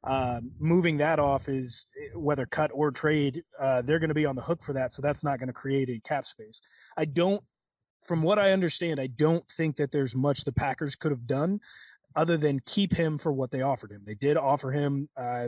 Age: 30-49